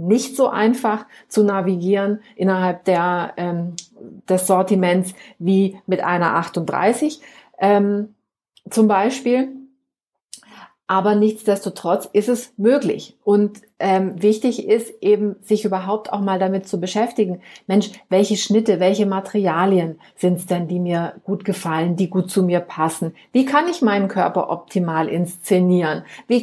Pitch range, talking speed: 185-225 Hz, 135 wpm